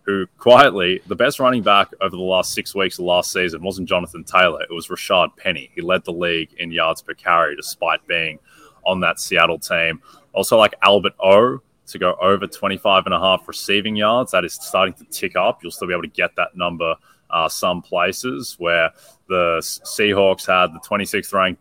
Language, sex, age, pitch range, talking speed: English, male, 20-39, 85-95 Hz, 200 wpm